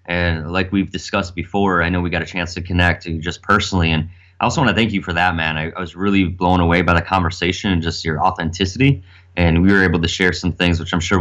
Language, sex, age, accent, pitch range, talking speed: English, male, 20-39, American, 85-95 Hz, 260 wpm